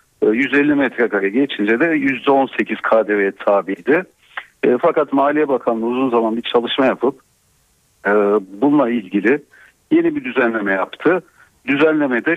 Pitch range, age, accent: 110-145 Hz, 60-79, native